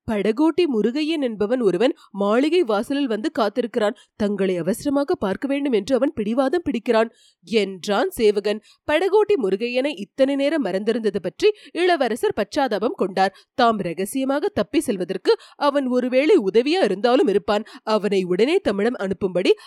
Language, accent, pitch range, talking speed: Tamil, native, 205-300 Hz, 115 wpm